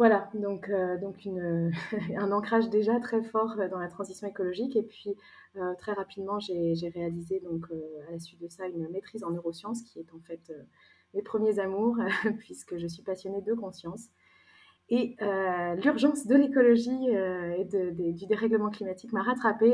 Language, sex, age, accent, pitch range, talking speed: French, female, 20-39, French, 170-215 Hz, 195 wpm